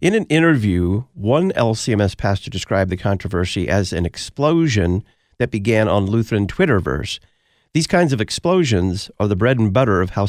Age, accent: 50-69, American